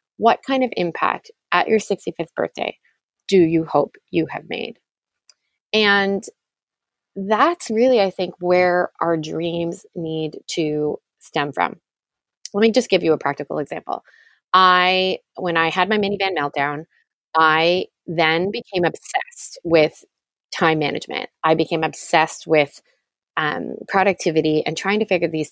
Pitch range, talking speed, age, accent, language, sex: 155-195 Hz, 140 wpm, 20-39, American, English, female